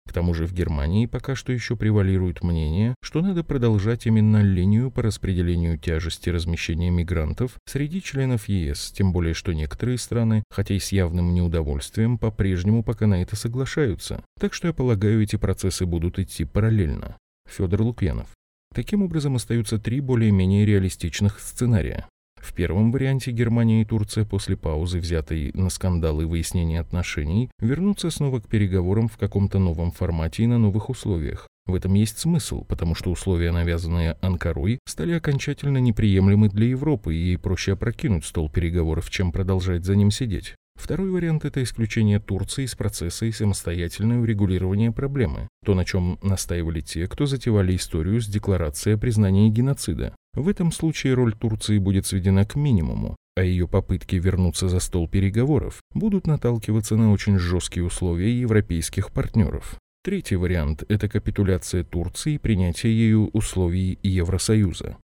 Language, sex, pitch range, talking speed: Russian, male, 90-115 Hz, 150 wpm